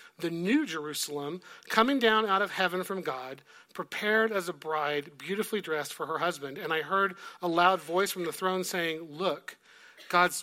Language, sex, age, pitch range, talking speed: English, male, 40-59, 150-185 Hz, 180 wpm